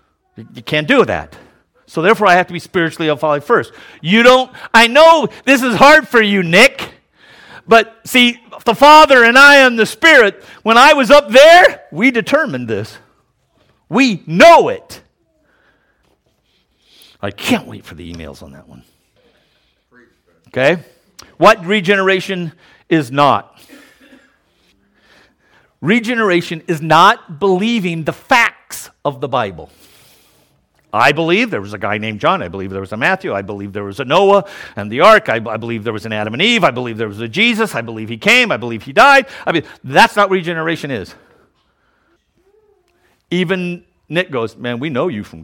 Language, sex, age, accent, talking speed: English, male, 50-69, American, 170 wpm